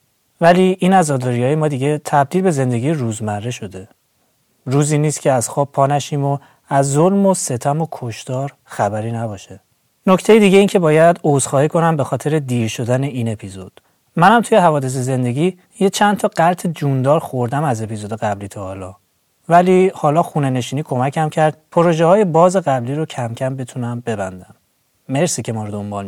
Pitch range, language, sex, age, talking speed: 120-170 Hz, Persian, male, 30-49, 165 wpm